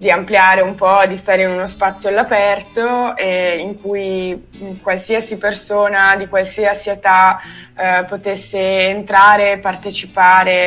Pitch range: 180-200 Hz